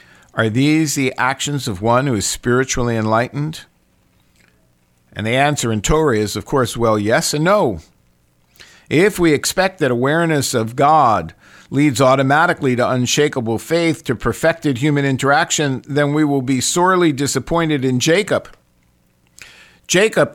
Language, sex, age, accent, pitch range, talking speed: English, male, 50-69, American, 105-150 Hz, 140 wpm